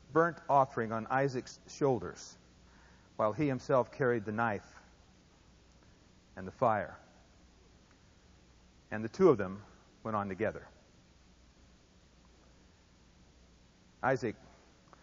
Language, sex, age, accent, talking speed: English, male, 60-79, American, 90 wpm